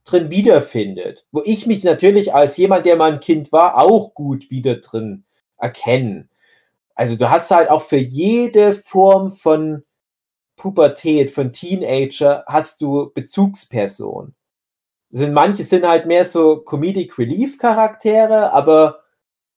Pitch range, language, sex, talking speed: 135-190 Hz, German, male, 130 wpm